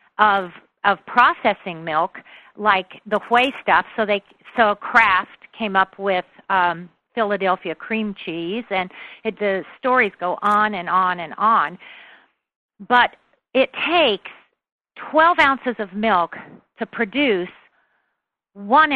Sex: female